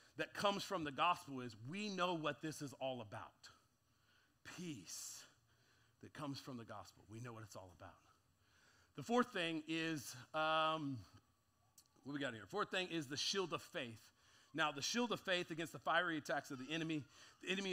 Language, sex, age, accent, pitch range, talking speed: English, male, 40-59, American, 125-165 Hz, 190 wpm